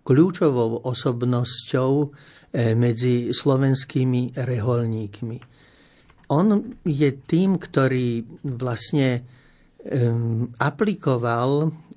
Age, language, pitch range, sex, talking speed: 50-69, Slovak, 120-145 Hz, male, 55 wpm